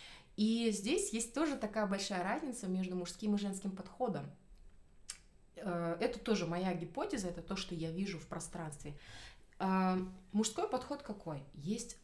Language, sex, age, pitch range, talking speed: Russian, female, 20-39, 170-215 Hz, 135 wpm